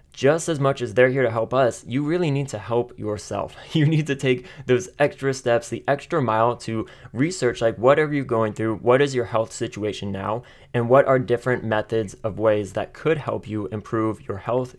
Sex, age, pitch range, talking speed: male, 20-39, 110-135 Hz, 210 wpm